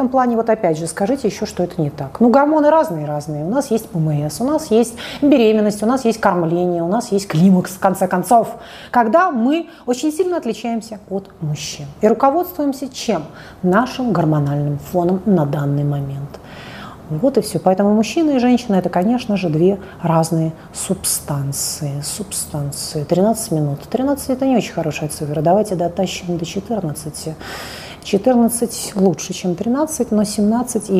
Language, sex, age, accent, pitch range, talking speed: Russian, female, 30-49, native, 155-225 Hz, 160 wpm